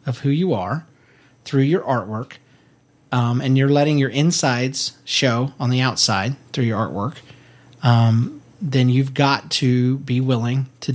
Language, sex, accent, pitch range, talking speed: English, male, American, 125-145 Hz, 155 wpm